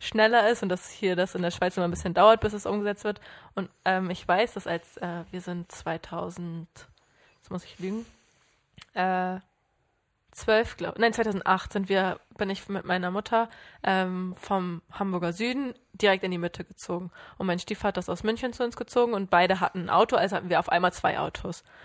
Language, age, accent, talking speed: German, 20-39, German, 200 wpm